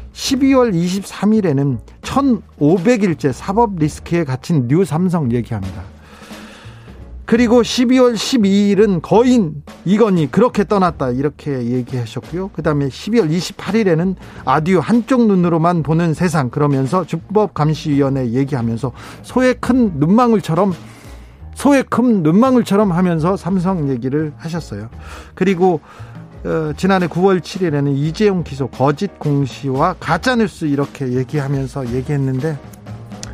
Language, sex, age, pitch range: Korean, male, 40-59, 135-200 Hz